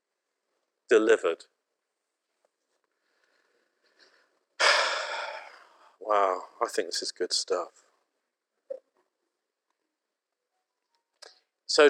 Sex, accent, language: male, British, English